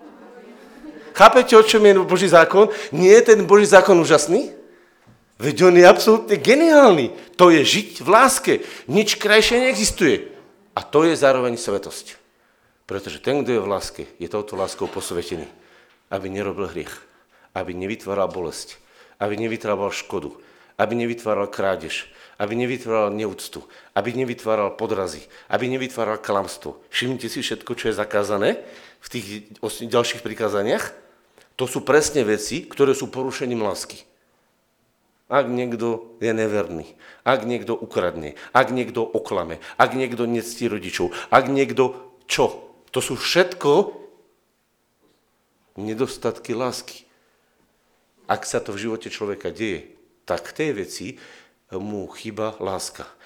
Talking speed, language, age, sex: 130 wpm, Slovak, 40-59, male